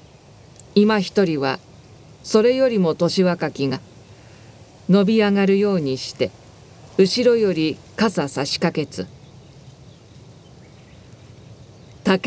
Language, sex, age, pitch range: Japanese, female, 40-59, 135-200 Hz